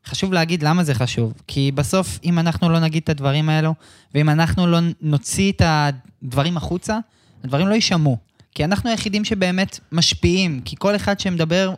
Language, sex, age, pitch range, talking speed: Hebrew, male, 20-39, 130-175 Hz, 170 wpm